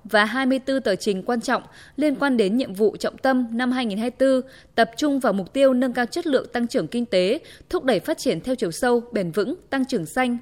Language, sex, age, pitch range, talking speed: Vietnamese, female, 20-39, 205-265 Hz, 265 wpm